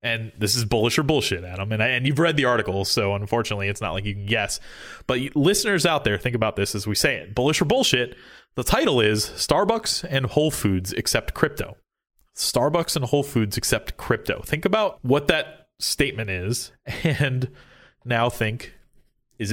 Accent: American